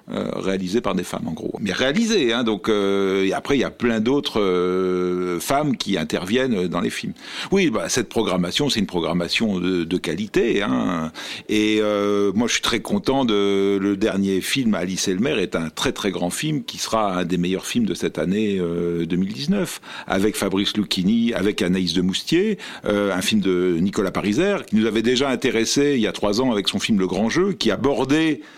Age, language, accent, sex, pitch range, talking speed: 50-69, French, French, male, 95-140 Hz, 210 wpm